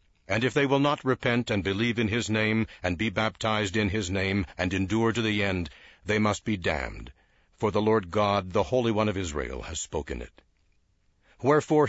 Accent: American